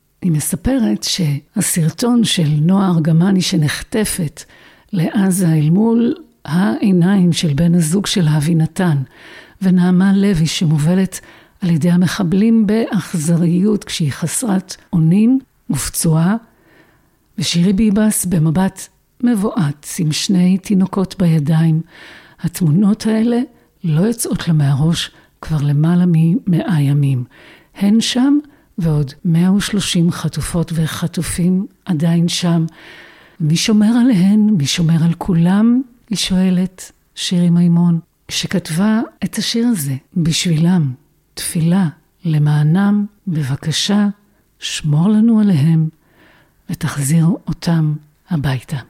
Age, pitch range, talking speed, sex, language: 50-69, 160-200 Hz, 95 wpm, female, Hebrew